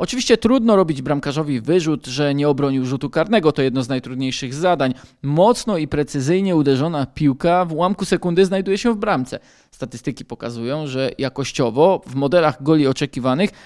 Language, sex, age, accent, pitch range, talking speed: Polish, male, 20-39, native, 135-180 Hz, 155 wpm